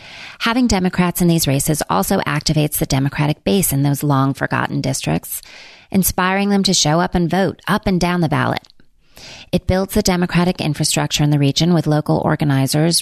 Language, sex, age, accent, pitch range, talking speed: English, female, 30-49, American, 140-175 Hz, 170 wpm